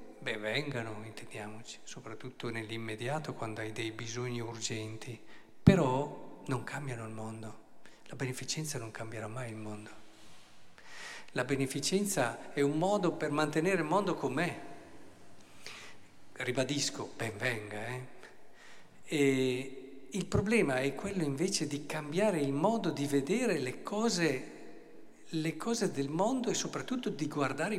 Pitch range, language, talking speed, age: 115-160 Hz, Italian, 120 wpm, 50-69